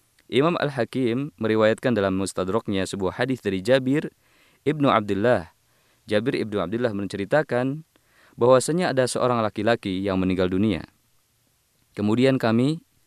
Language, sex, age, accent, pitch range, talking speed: Indonesian, male, 20-39, native, 100-135 Hz, 115 wpm